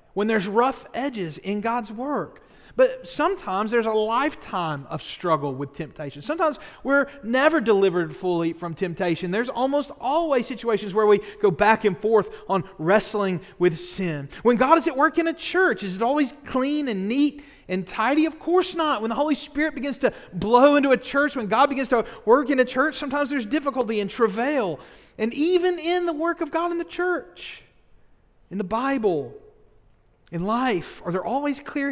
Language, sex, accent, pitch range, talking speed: English, male, American, 170-280 Hz, 185 wpm